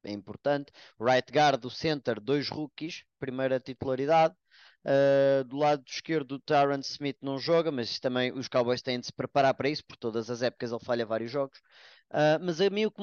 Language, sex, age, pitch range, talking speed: Portuguese, male, 20-39, 140-185 Hz, 190 wpm